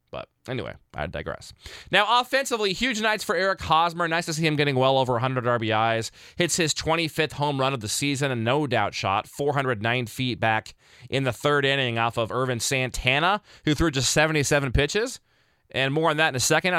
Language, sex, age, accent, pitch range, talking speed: English, male, 20-39, American, 120-155 Hz, 195 wpm